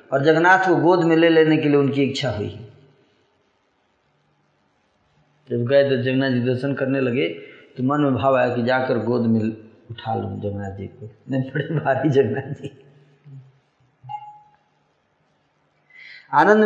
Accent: native